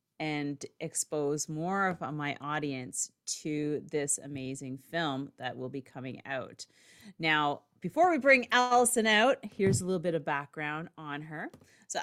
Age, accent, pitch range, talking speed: 40-59, American, 145-190 Hz, 150 wpm